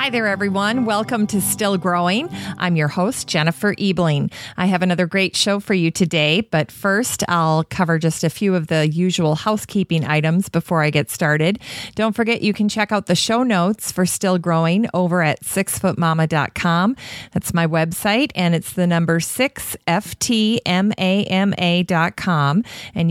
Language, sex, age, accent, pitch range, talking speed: English, female, 40-59, American, 160-205 Hz, 165 wpm